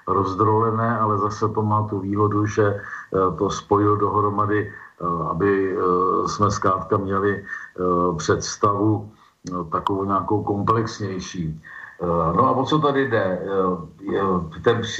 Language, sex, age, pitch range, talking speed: Slovak, male, 50-69, 95-110 Hz, 105 wpm